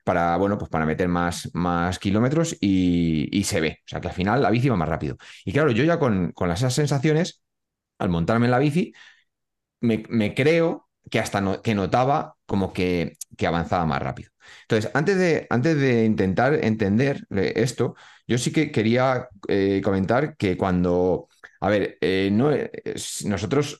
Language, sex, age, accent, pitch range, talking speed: Spanish, male, 30-49, Spanish, 95-140 Hz, 175 wpm